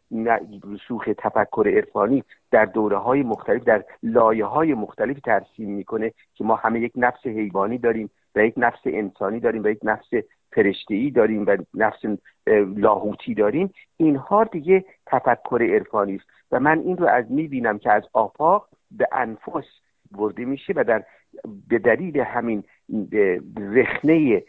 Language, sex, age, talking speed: Persian, male, 50-69, 140 wpm